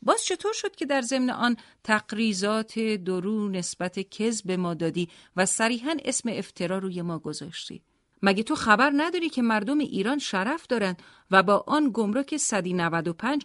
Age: 40-59